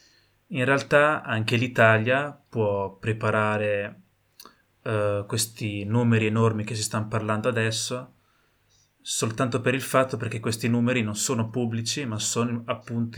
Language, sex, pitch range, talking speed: Italian, male, 105-115 Hz, 125 wpm